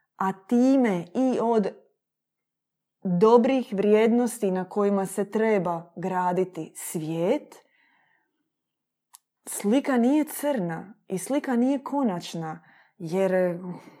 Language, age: Croatian, 20-39